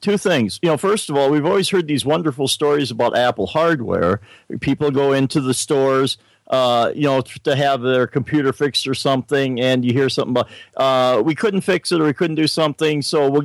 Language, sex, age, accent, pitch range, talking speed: English, male, 50-69, American, 125-150 Hz, 215 wpm